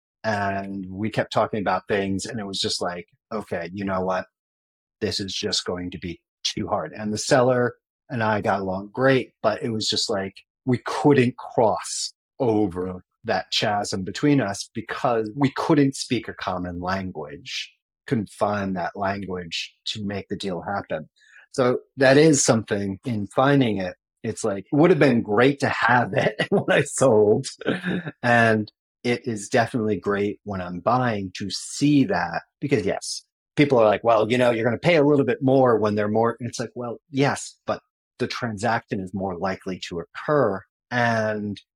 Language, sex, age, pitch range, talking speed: English, male, 30-49, 95-125 Hz, 175 wpm